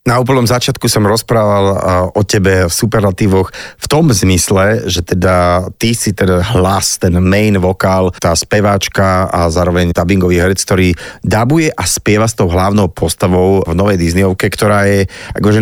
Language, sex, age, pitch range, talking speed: Slovak, male, 30-49, 95-115 Hz, 160 wpm